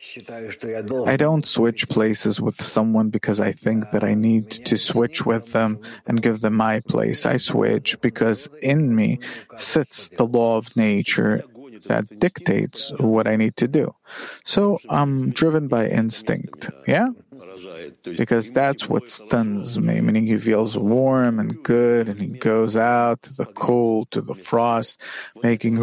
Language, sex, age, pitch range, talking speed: English, male, 40-59, 110-140 Hz, 155 wpm